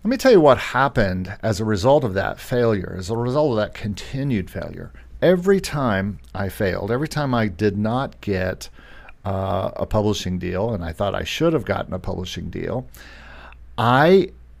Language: English